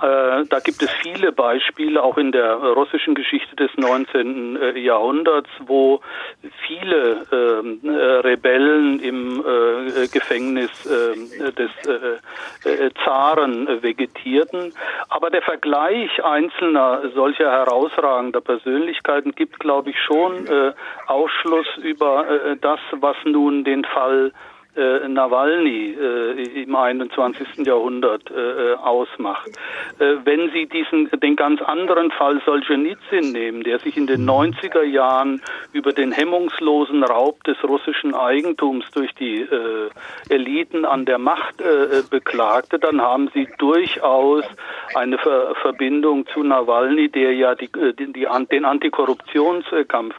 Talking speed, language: 115 wpm, German